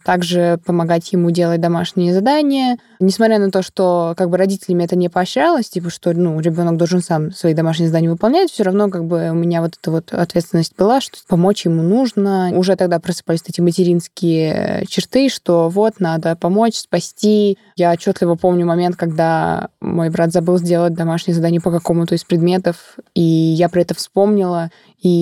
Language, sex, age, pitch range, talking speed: Russian, female, 20-39, 170-195 Hz, 175 wpm